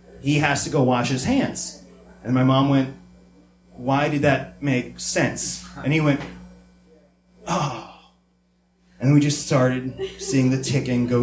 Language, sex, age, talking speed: English, male, 30-49, 150 wpm